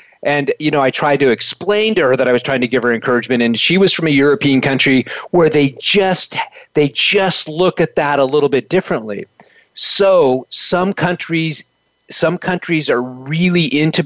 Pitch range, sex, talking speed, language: 135-170 Hz, male, 190 wpm, English